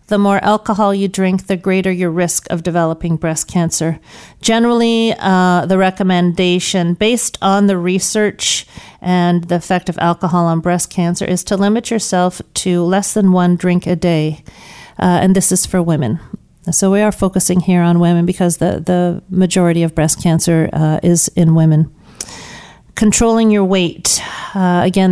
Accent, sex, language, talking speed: American, female, English, 165 wpm